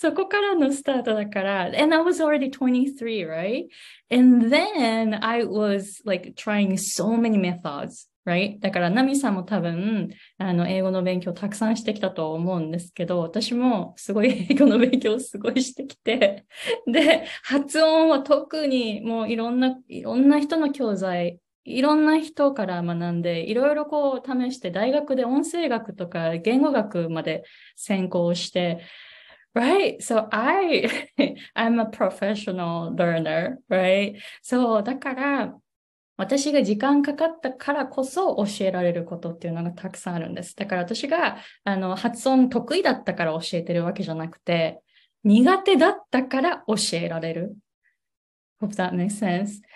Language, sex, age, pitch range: Japanese, female, 20-39, 185-275 Hz